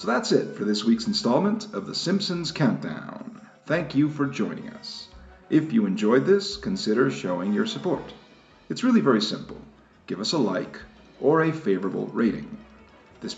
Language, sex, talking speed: English, male, 165 wpm